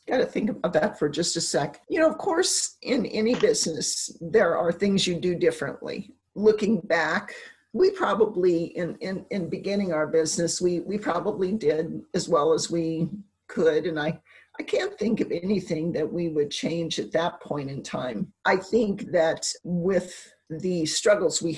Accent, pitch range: American, 160-225 Hz